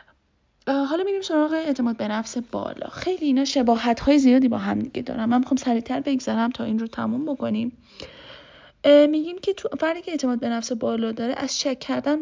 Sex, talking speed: female, 180 wpm